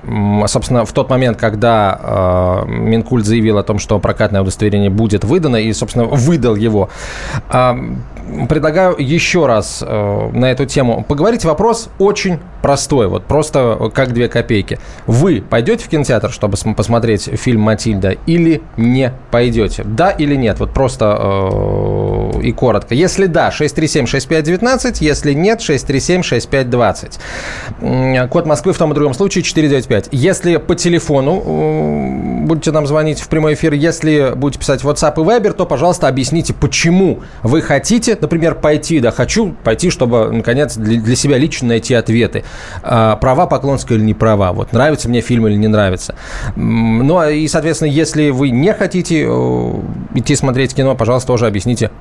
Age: 20-39